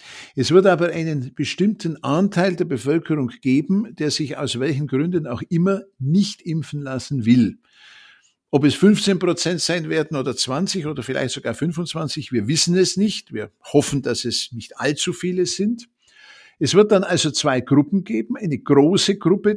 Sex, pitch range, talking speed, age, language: male, 130-185 Hz, 165 wpm, 60-79, German